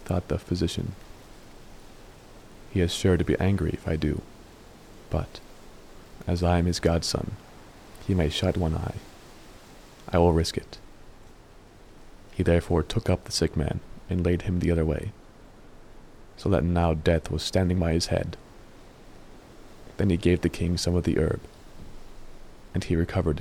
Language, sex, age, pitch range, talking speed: English, male, 30-49, 80-95 Hz, 155 wpm